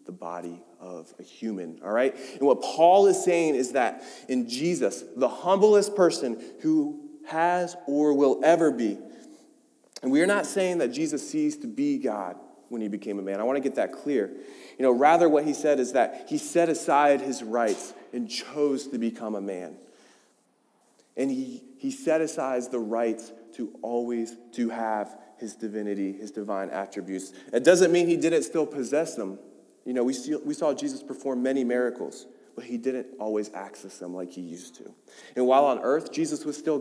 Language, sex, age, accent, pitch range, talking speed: English, male, 30-49, American, 110-170 Hz, 190 wpm